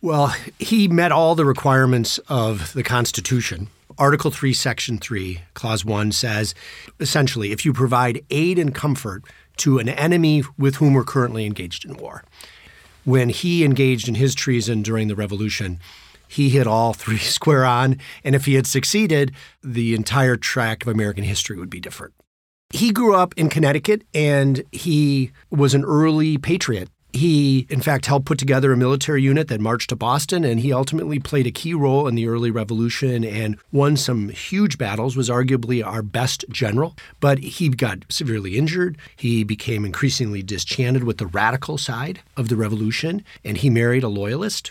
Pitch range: 115-145 Hz